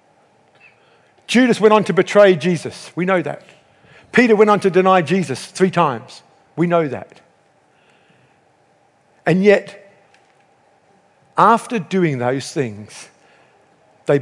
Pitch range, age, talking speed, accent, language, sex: 150-220 Hz, 50-69, 115 wpm, British, English, male